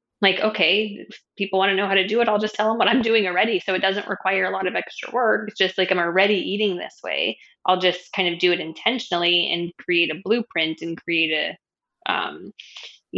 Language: English